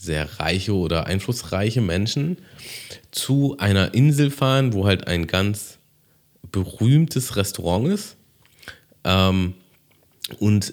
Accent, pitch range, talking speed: German, 85-115 Hz, 95 wpm